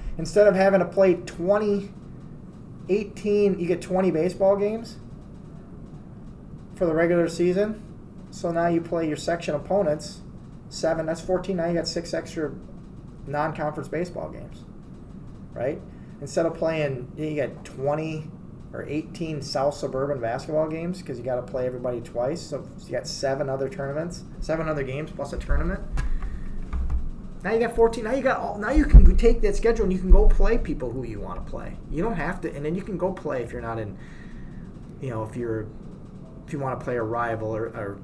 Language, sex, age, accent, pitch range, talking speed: English, male, 20-39, American, 130-185 Hz, 190 wpm